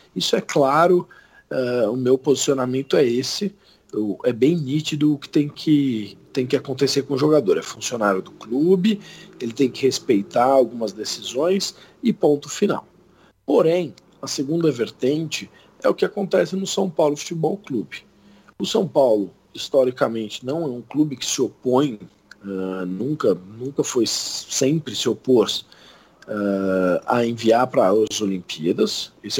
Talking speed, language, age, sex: 150 wpm, Portuguese, 40-59, male